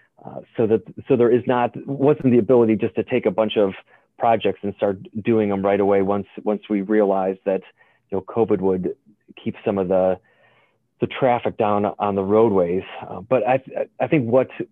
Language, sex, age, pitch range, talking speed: English, male, 30-49, 100-115 Hz, 195 wpm